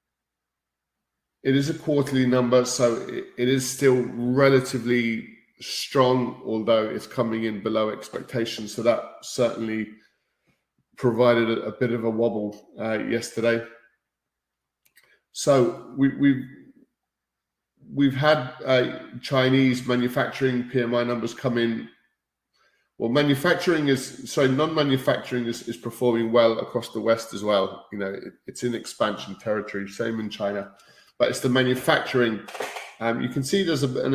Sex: male